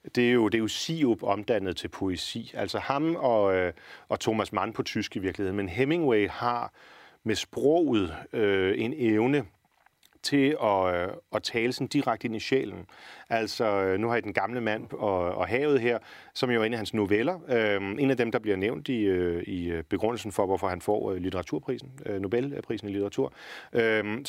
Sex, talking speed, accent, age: male, 185 wpm, native, 40-59